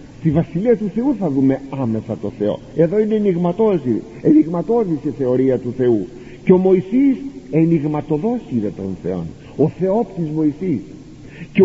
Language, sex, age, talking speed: Greek, male, 50-69, 140 wpm